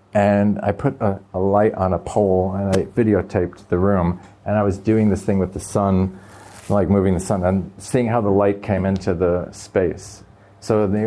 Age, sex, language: 40-59, male, English